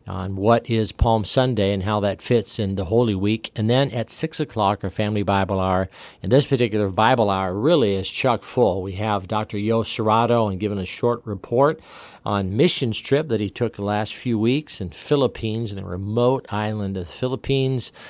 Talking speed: 200 wpm